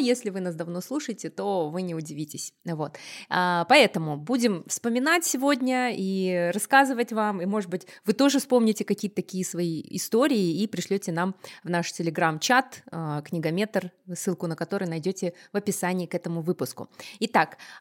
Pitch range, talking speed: 175-250 Hz, 150 wpm